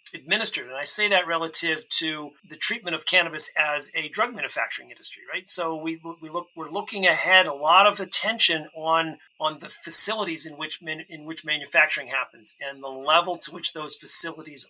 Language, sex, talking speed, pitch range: English, male, 190 wpm, 145-170 Hz